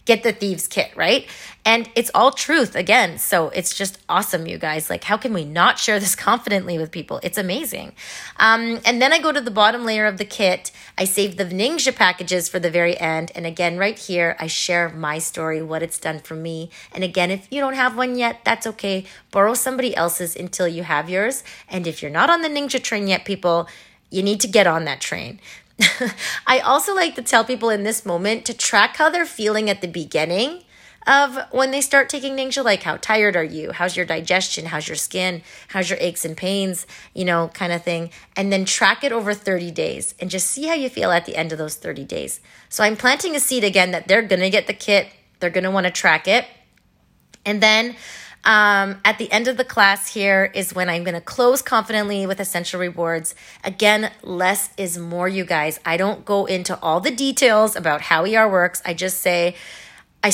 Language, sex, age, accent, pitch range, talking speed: English, female, 30-49, American, 175-230 Hz, 220 wpm